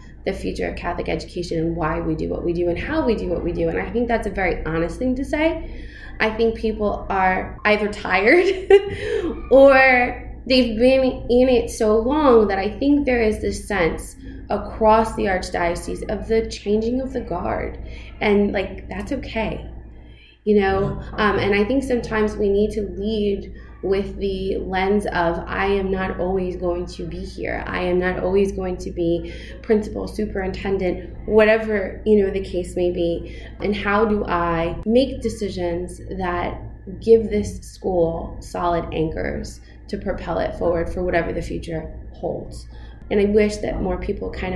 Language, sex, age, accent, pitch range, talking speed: English, female, 20-39, American, 175-220 Hz, 175 wpm